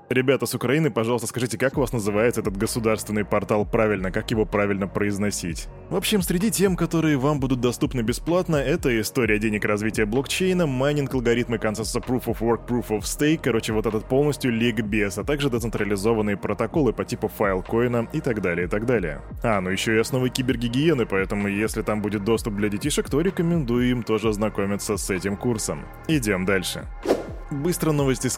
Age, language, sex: 20-39, Russian, male